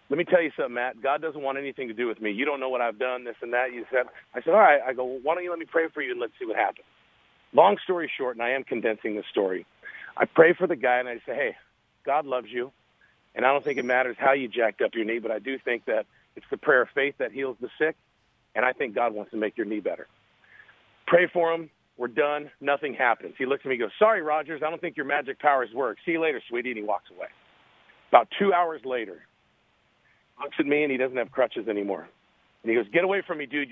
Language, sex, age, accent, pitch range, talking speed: English, male, 40-59, American, 125-160 Hz, 270 wpm